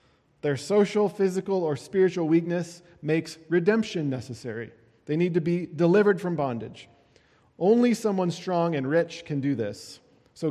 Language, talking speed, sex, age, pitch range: English, 145 wpm, male, 40-59, 140-190 Hz